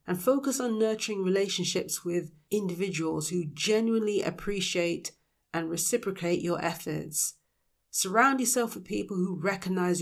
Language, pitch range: English, 165-200 Hz